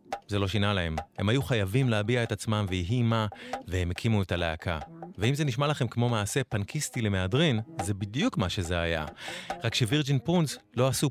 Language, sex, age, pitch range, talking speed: English, male, 30-49, 100-130 Hz, 180 wpm